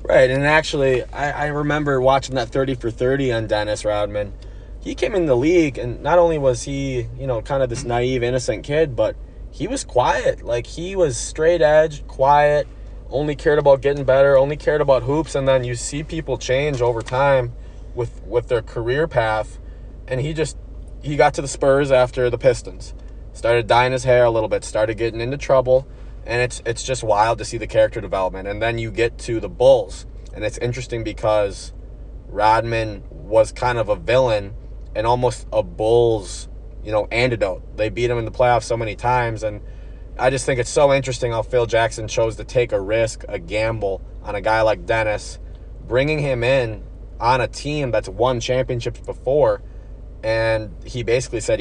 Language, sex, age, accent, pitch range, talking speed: English, male, 20-39, American, 110-135 Hz, 190 wpm